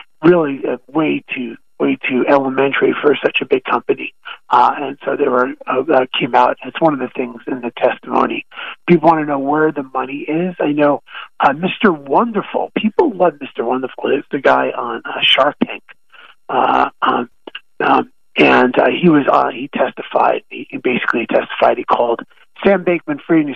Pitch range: 130-175 Hz